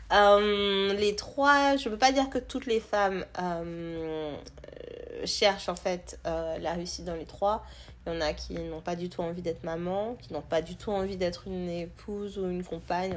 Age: 30-49